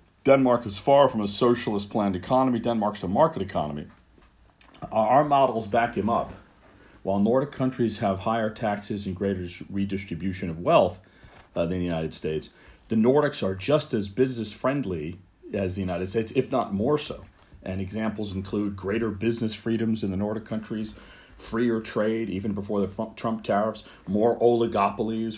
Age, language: 40-59, English